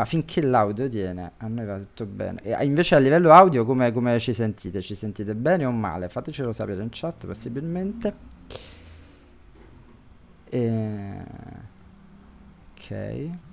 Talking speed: 130 wpm